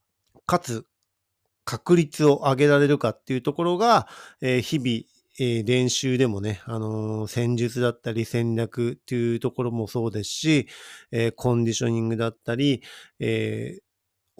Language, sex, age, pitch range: Japanese, male, 40-59, 115-150 Hz